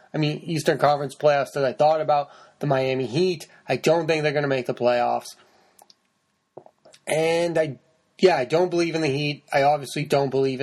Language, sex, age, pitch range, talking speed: English, male, 30-49, 130-160 Hz, 190 wpm